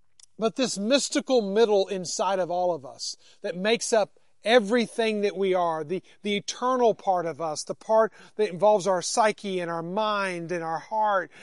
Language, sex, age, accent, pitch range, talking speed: English, male, 40-59, American, 175-225 Hz, 180 wpm